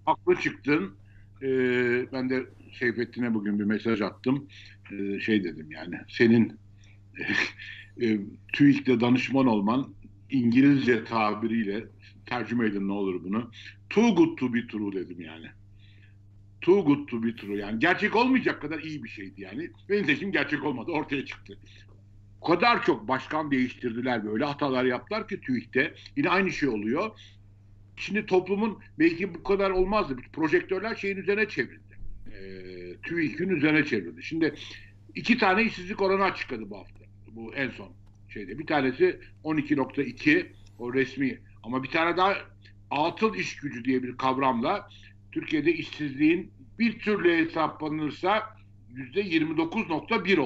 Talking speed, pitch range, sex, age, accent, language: 135 wpm, 100-165 Hz, male, 60-79, native, Turkish